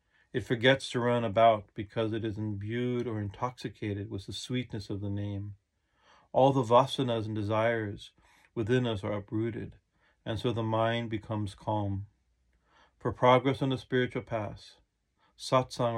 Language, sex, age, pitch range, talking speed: English, male, 40-59, 105-125 Hz, 145 wpm